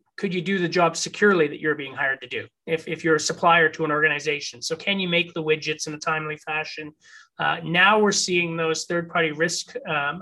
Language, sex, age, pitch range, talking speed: English, male, 30-49, 155-180 Hz, 230 wpm